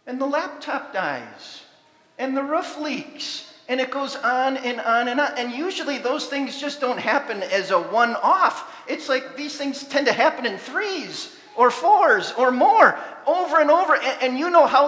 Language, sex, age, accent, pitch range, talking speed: English, male, 40-59, American, 240-320 Hz, 190 wpm